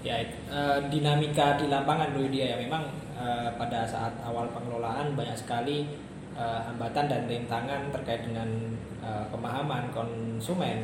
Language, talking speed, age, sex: Indonesian, 140 wpm, 20-39, male